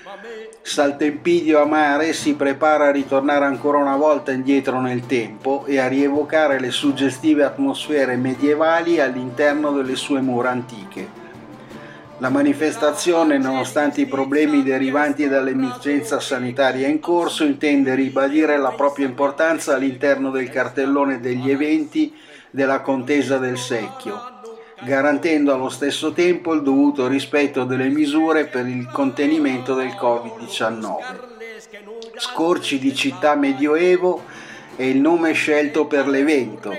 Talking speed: 115 wpm